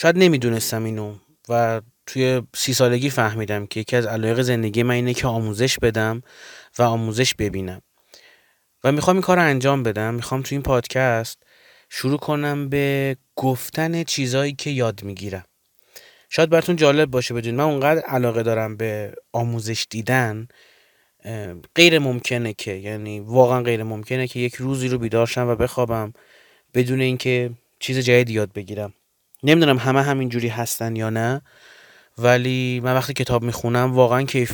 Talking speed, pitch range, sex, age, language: 145 wpm, 110-135 Hz, male, 30-49, Persian